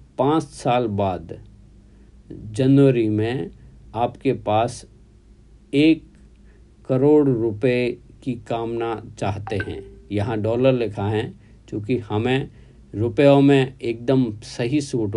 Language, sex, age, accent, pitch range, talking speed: Hindi, male, 50-69, native, 110-135 Hz, 100 wpm